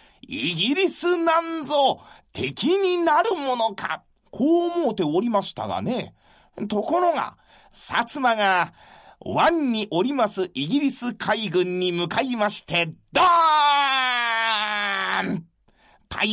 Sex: male